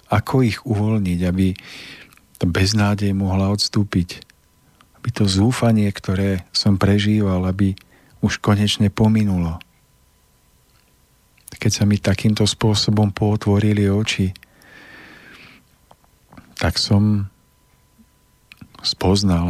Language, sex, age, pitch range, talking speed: Slovak, male, 50-69, 90-105 Hz, 85 wpm